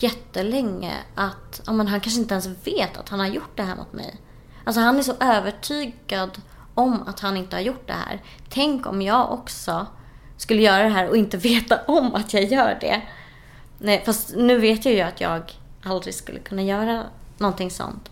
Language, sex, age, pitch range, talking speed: Swedish, female, 20-39, 180-215 Hz, 195 wpm